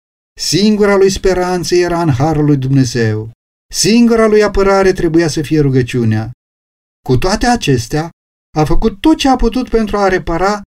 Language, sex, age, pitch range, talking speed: Romanian, male, 40-59, 135-205 Hz, 150 wpm